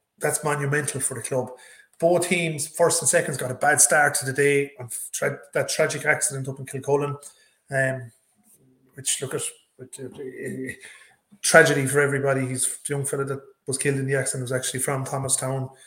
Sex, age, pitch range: male, 30-49, 130-145 Hz